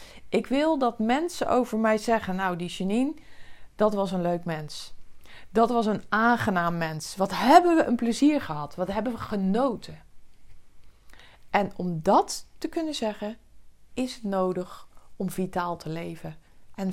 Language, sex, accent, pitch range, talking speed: Dutch, female, Dutch, 175-250 Hz, 155 wpm